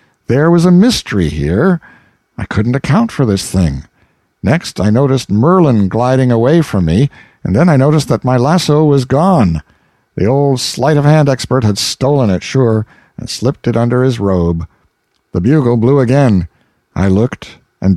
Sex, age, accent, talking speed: male, 60-79, American, 165 wpm